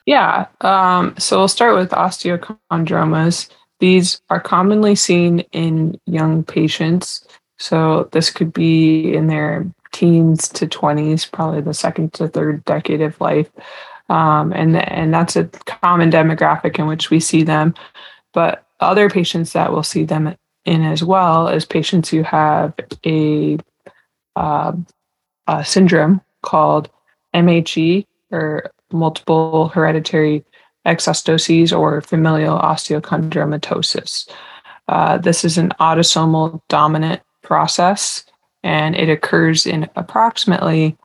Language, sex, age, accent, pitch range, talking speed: English, female, 20-39, American, 155-175 Hz, 120 wpm